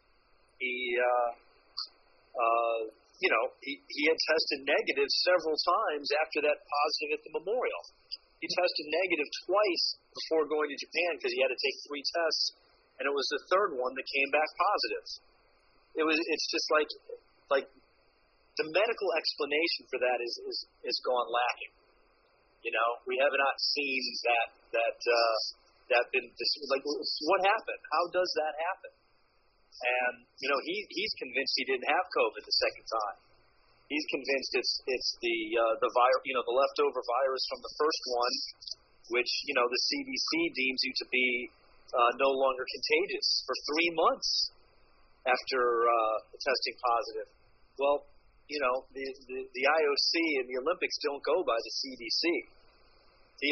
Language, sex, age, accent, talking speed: English, male, 40-59, American, 160 wpm